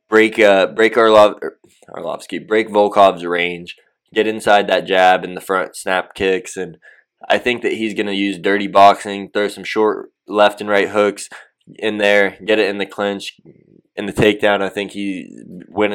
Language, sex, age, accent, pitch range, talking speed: English, male, 20-39, American, 95-110 Hz, 185 wpm